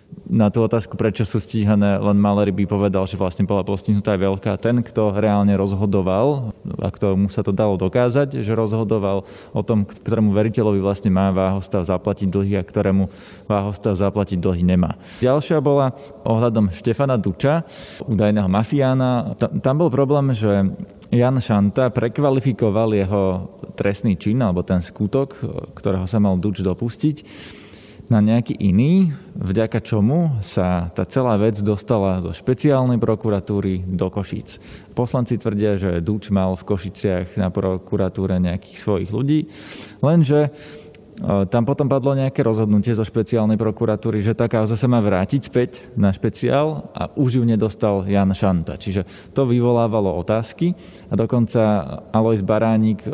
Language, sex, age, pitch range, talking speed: Slovak, male, 20-39, 100-120 Hz, 145 wpm